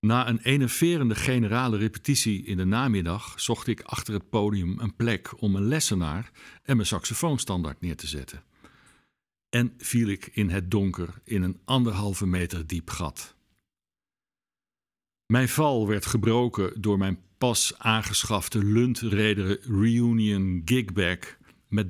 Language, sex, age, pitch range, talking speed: Dutch, male, 50-69, 95-115 Hz, 130 wpm